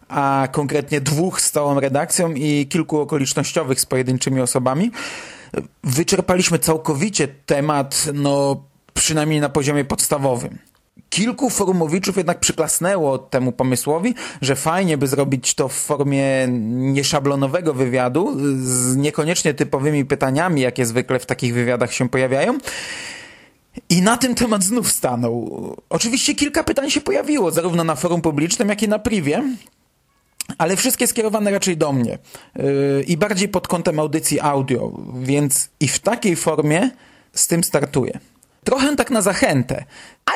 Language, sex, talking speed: Polish, male, 135 wpm